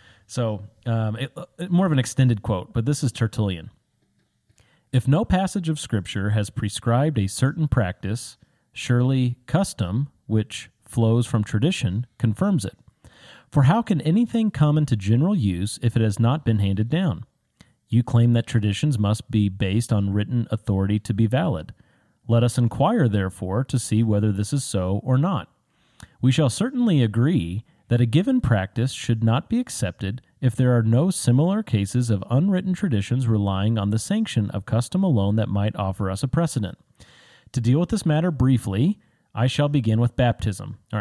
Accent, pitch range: American, 110-140 Hz